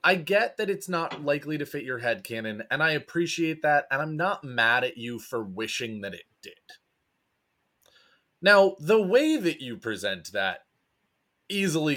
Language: English